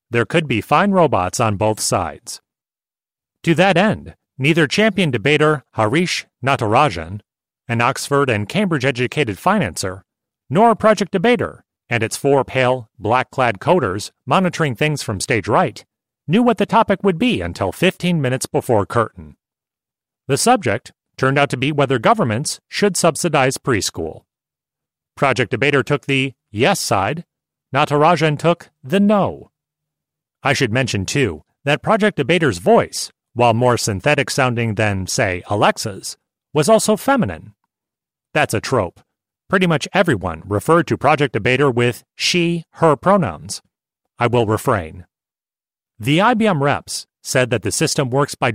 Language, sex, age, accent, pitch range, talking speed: English, male, 40-59, American, 120-170 Hz, 135 wpm